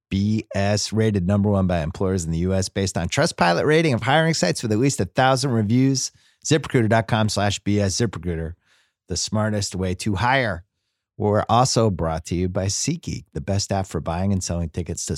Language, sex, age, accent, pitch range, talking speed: English, male, 30-49, American, 95-130 Hz, 190 wpm